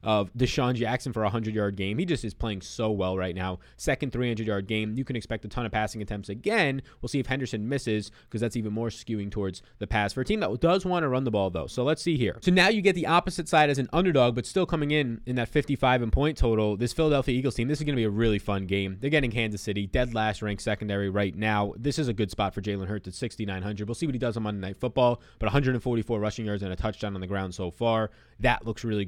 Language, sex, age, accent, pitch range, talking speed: English, male, 20-39, American, 105-135 Hz, 270 wpm